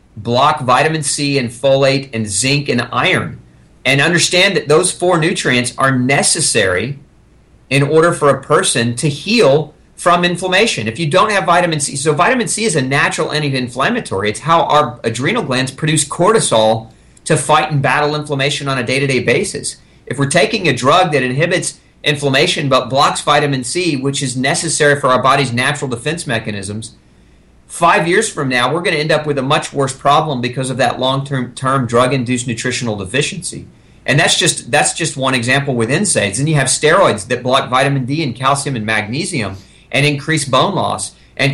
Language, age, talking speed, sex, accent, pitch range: English, 40-59, 180 wpm, male, American, 125-150 Hz